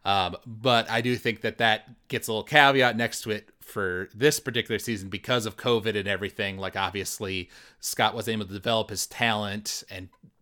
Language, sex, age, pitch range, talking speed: English, male, 30-49, 100-120 Hz, 190 wpm